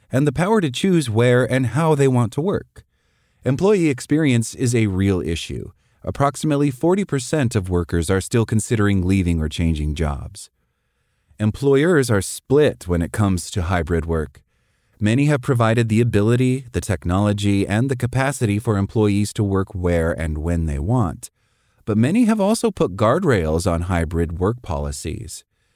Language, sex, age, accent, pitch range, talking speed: English, male, 30-49, American, 95-130 Hz, 155 wpm